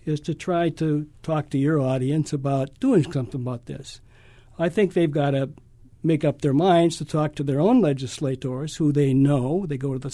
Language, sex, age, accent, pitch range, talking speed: English, male, 60-79, American, 130-165 Hz, 205 wpm